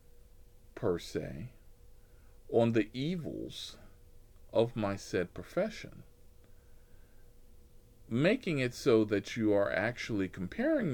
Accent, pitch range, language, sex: American, 90-115 Hz, English, male